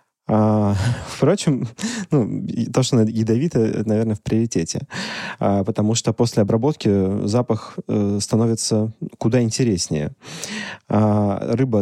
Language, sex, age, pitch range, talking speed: Russian, male, 30-49, 100-130 Hz, 110 wpm